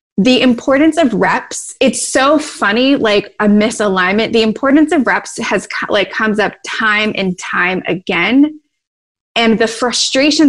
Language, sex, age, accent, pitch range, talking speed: English, female, 20-39, American, 200-245 Hz, 145 wpm